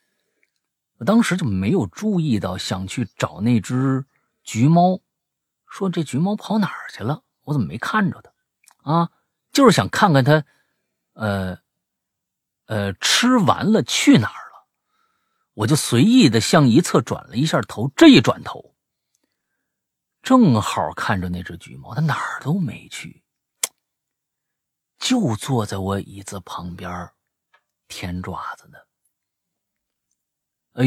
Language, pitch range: Chinese, 100-165 Hz